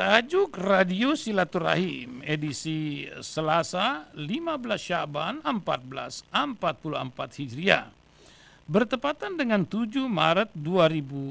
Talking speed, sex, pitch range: 70 wpm, male, 150-215 Hz